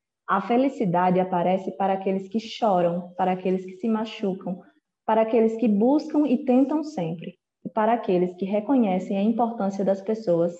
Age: 20-39